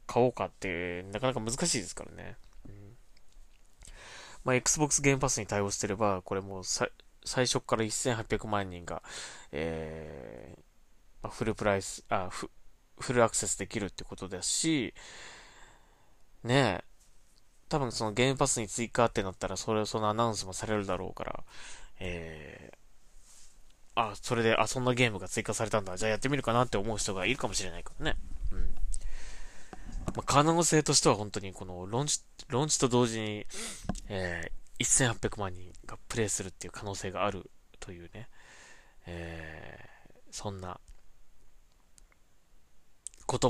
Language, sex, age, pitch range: Japanese, male, 20-39, 90-115 Hz